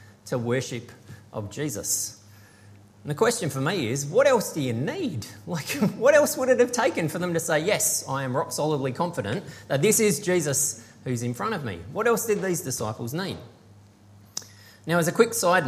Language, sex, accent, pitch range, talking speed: English, male, Australian, 115-175 Hz, 195 wpm